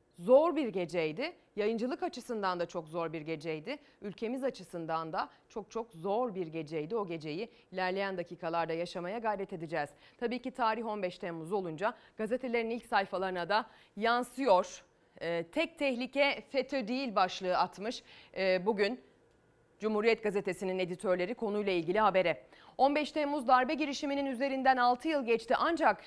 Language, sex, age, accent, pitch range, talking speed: Turkish, female, 30-49, native, 195-270 Hz, 135 wpm